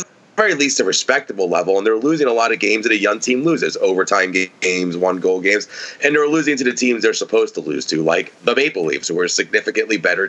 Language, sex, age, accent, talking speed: English, male, 30-49, American, 235 wpm